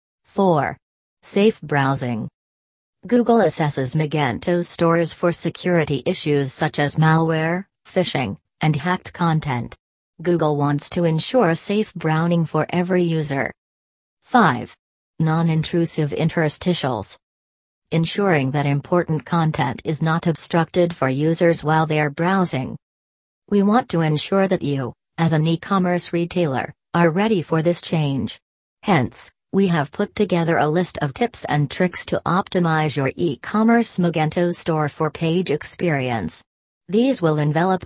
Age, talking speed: 40-59, 125 wpm